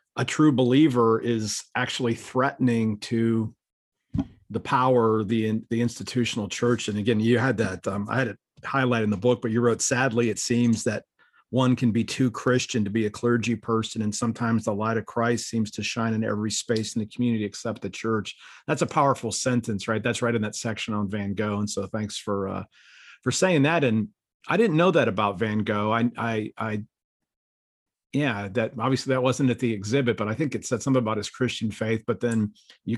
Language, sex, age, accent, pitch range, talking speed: English, male, 40-59, American, 110-125 Hz, 205 wpm